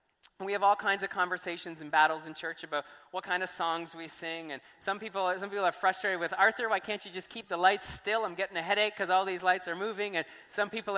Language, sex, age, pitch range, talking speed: English, male, 20-39, 170-200 Hz, 255 wpm